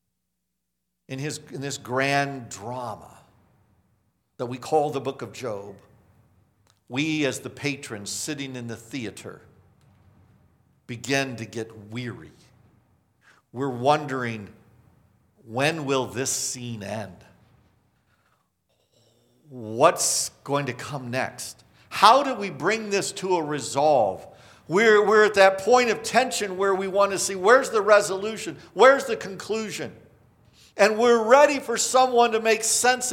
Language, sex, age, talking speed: English, male, 60-79, 125 wpm